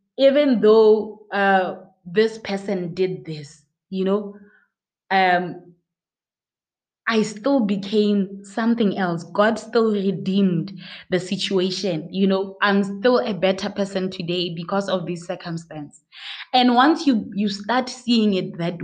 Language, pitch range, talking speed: English, 180-215 Hz, 125 wpm